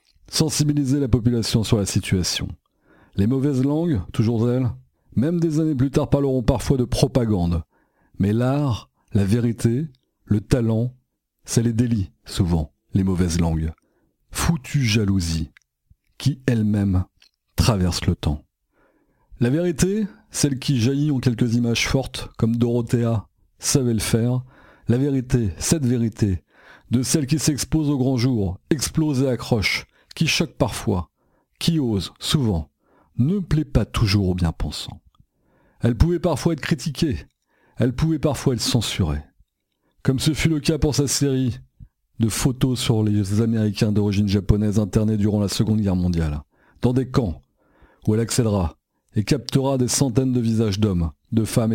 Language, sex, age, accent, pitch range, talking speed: French, male, 40-59, French, 100-135 Hz, 145 wpm